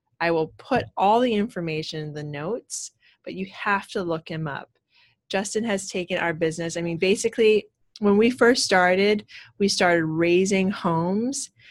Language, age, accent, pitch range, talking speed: English, 30-49, American, 175-240 Hz, 165 wpm